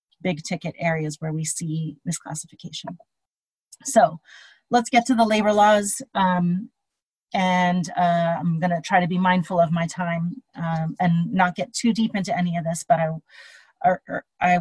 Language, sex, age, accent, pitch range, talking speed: English, female, 30-49, American, 170-200 Hz, 170 wpm